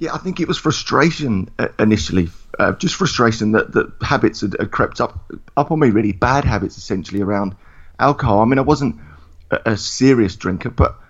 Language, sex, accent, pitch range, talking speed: English, male, British, 100-130 Hz, 190 wpm